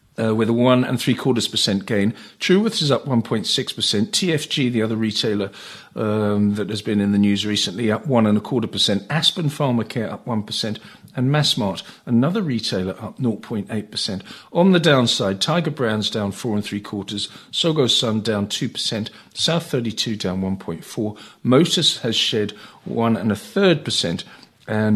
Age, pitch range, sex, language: 50-69, 100-130 Hz, male, English